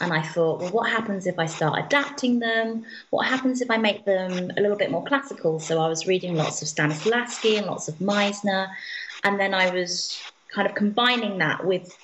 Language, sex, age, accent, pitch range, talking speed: English, female, 20-39, British, 165-225 Hz, 210 wpm